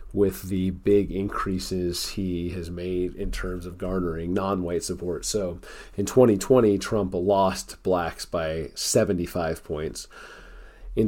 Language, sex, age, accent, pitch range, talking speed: English, male, 30-49, American, 85-100 Hz, 140 wpm